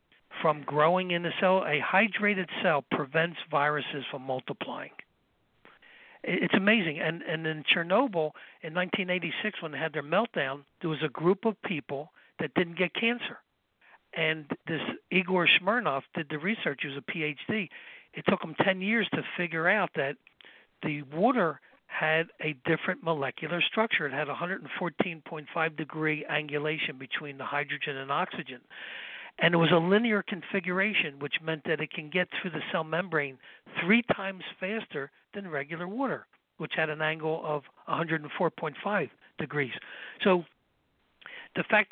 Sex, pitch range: male, 155-185 Hz